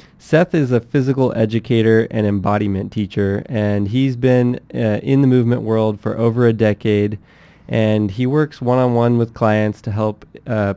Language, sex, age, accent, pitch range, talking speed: English, male, 20-39, American, 105-120 Hz, 160 wpm